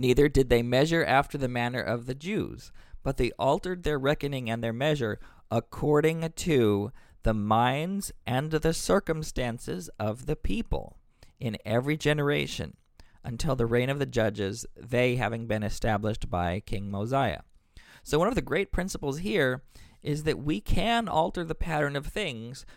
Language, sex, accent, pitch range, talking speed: English, male, American, 120-155 Hz, 160 wpm